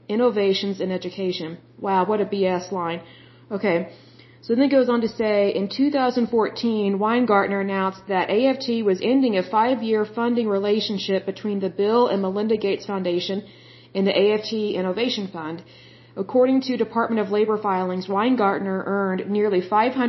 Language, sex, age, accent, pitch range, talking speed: German, female, 40-59, American, 185-230 Hz, 145 wpm